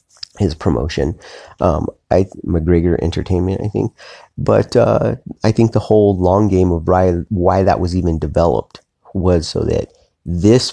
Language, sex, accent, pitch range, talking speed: English, male, American, 80-95 Hz, 145 wpm